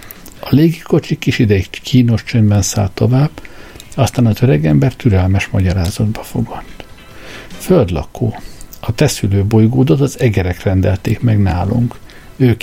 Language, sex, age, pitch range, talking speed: Hungarian, male, 60-79, 105-125 Hz, 110 wpm